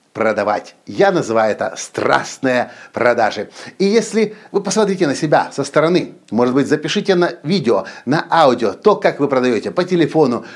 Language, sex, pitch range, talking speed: Russian, male, 145-200 Hz, 150 wpm